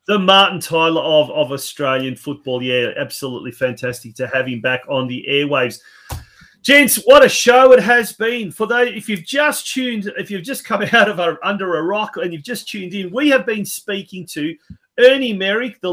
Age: 40-59